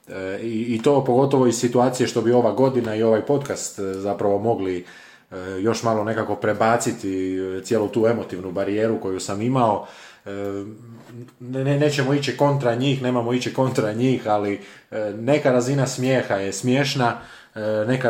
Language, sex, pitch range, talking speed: Croatian, male, 105-125 Hz, 140 wpm